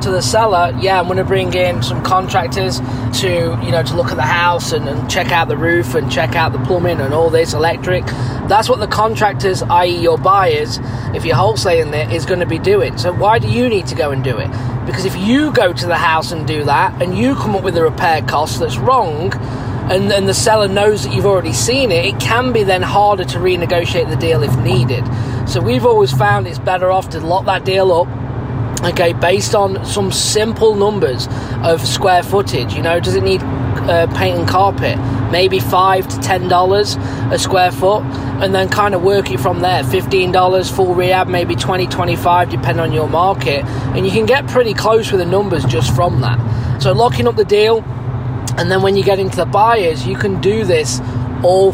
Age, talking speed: 20-39, 220 wpm